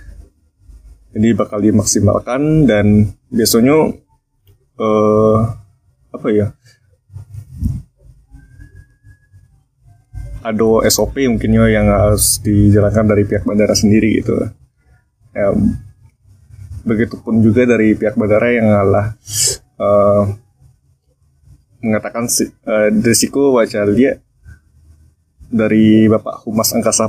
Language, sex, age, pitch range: Indonesian, male, 20-39, 105-115 Hz